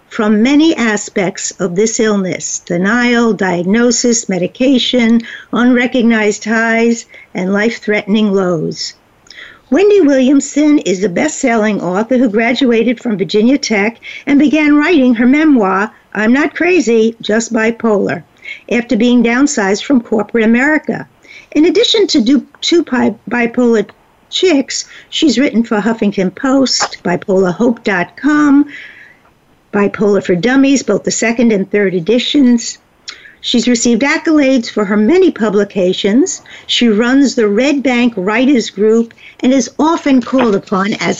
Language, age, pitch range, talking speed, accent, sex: English, 60-79, 215-275 Hz, 120 wpm, American, female